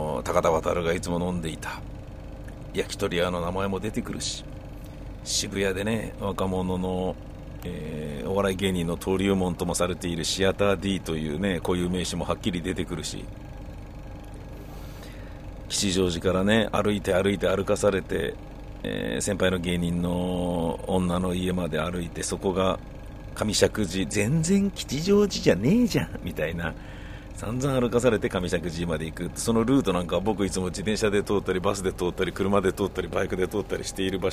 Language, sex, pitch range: Japanese, male, 85-100 Hz